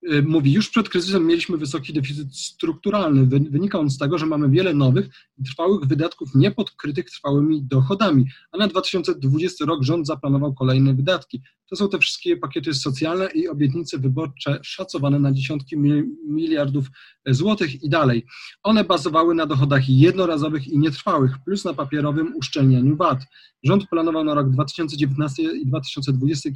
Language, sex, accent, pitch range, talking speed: Polish, male, native, 135-170 Hz, 145 wpm